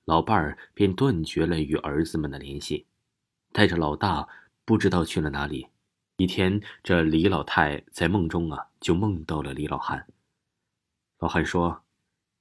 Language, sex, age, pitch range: Chinese, male, 30-49, 80-105 Hz